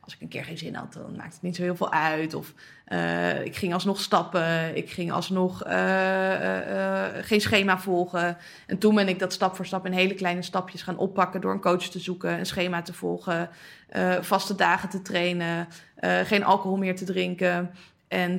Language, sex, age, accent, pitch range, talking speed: Dutch, female, 20-39, Dutch, 180-195 Hz, 210 wpm